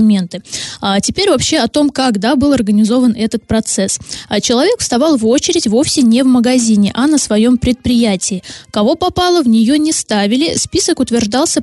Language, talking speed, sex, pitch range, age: Russian, 155 wpm, female, 220-285 Hz, 20-39